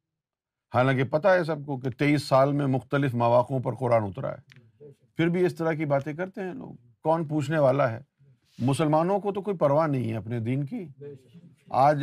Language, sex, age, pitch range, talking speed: Urdu, male, 50-69, 120-155 Hz, 195 wpm